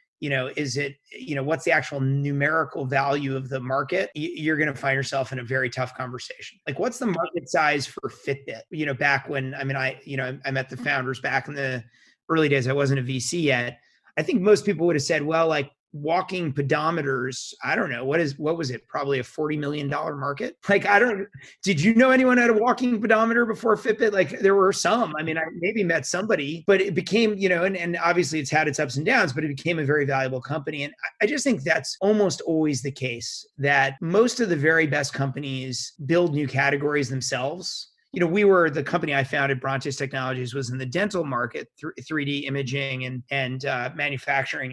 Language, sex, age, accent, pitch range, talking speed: English, male, 30-49, American, 135-170 Hz, 220 wpm